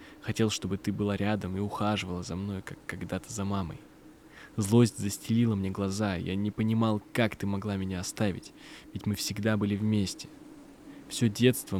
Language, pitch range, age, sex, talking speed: Russian, 95-110 Hz, 20-39, male, 165 wpm